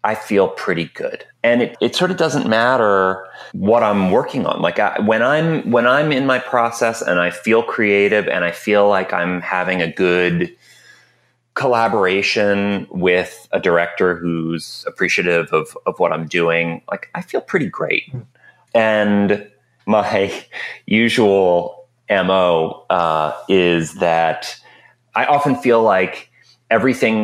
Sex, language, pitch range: male, English, 85-120 Hz